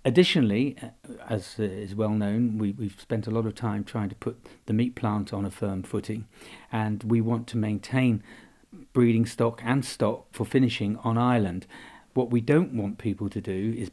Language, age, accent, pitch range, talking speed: English, 40-59, British, 105-120 Hz, 190 wpm